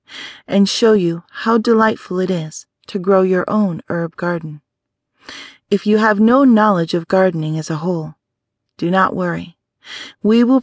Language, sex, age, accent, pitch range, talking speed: English, female, 40-59, American, 165-215 Hz, 160 wpm